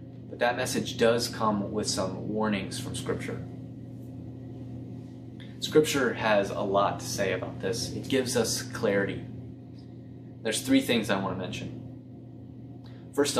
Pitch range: 110-130 Hz